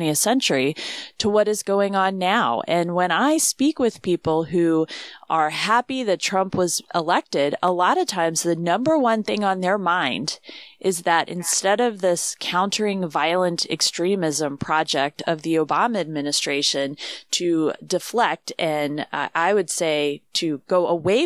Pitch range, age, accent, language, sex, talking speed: 155-185 Hz, 30-49, American, English, female, 160 wpm